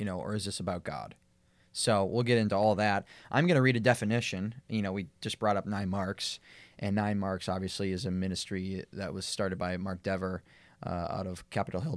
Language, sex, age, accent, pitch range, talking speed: English, male, 20-39, American, 95-115 Hz, 220 wpm